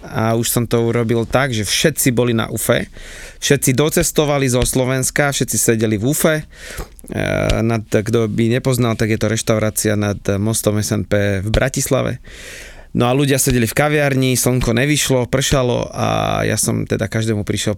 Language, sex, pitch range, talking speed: Slovak, male, 110-130 Hz, 155 wpm